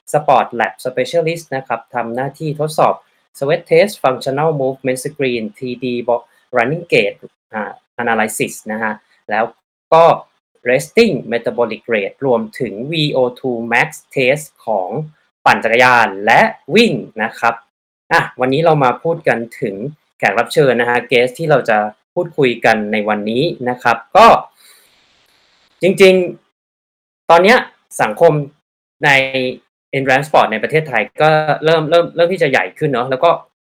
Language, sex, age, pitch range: Thai, male, 20-39, 120-165 Hz